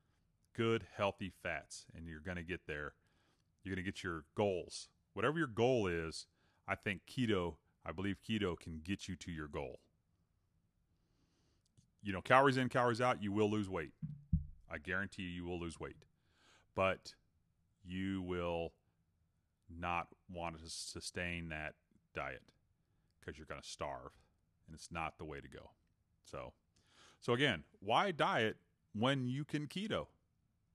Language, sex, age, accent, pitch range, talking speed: English, male, 30-49, American, 80-100 Hz, 150 wpm